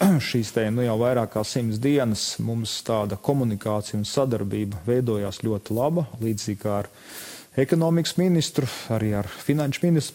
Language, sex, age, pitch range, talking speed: English, male, 30-49, 110-135 Hz, 150 wpm